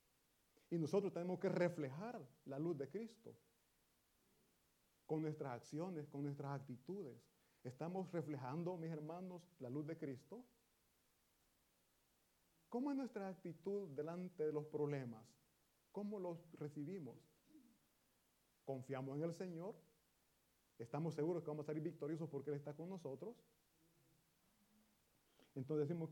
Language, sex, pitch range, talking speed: Italian, male, 145-190 Hz, 120 wpm